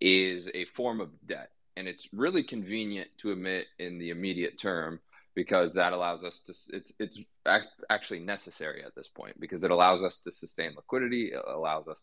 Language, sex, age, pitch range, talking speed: English, male, 20-39, 90-110 Hz, 185 wpm